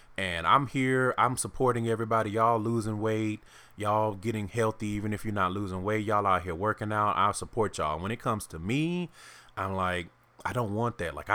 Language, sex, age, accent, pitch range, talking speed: English, male, 20-39, American, 90-110 Hz, 200 wpm